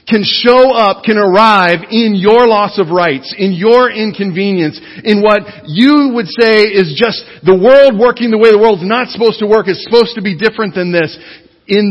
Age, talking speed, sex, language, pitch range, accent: 40-59, 195 wpm, male, English, 120-175 Hz, American